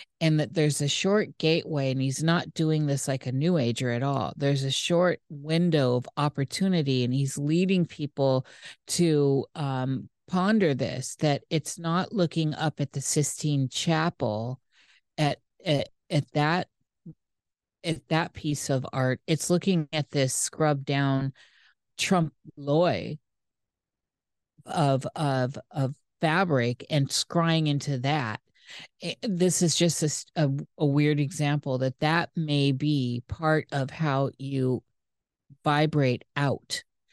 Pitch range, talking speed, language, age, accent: 135-165 Hz, 135 wpm, English, 50-69, American